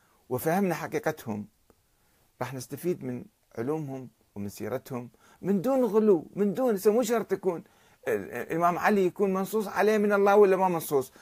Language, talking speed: Arabic, 140 wpm